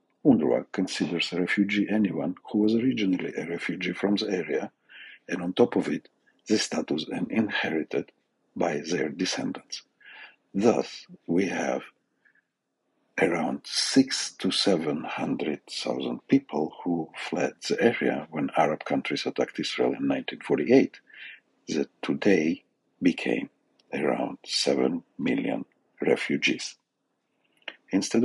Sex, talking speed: male, 115 wpm